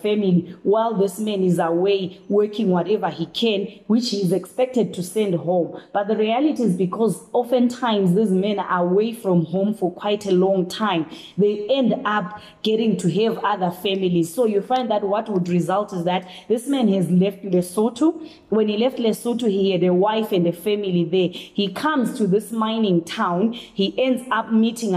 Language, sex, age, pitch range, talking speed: English, female, 20-39, 180-220 Hz, 185 wpm